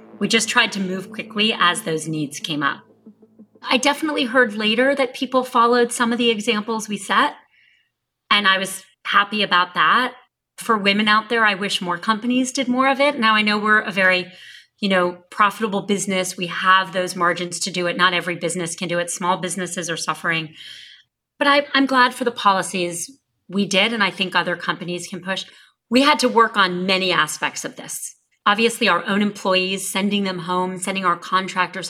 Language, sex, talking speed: English, female, 195 wpm